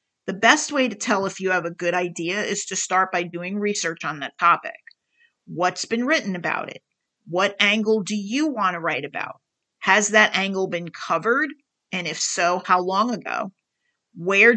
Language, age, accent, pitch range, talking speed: English, 40-59, American, 180-225 Hz, 185 wpm